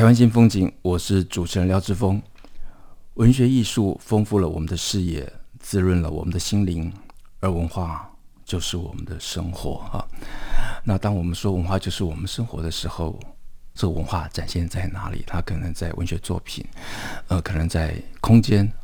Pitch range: 85-95 Hz